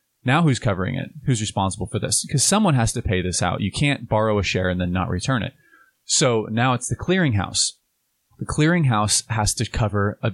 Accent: American